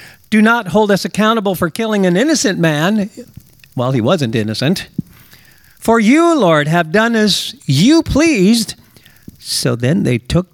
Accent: American